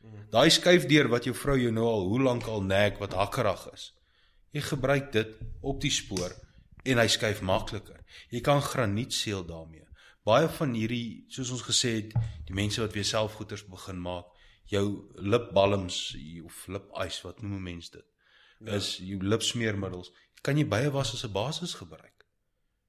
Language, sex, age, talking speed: English, male, 30-49, 160 wpm